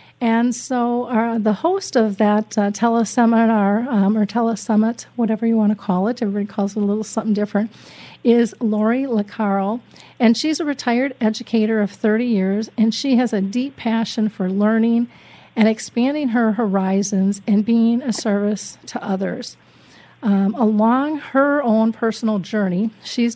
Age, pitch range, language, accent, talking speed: 40-59, 205-230 Hz, English, American, 155 wpm